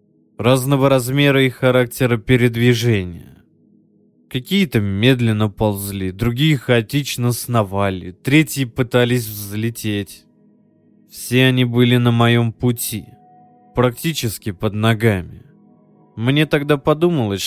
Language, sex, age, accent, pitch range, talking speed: Russian, male, 20-39, native, 110-130 Hz, 90 wpm